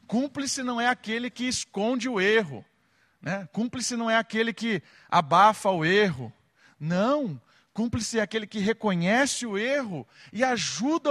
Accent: Brazilian